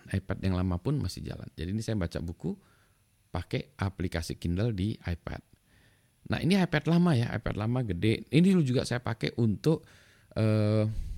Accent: native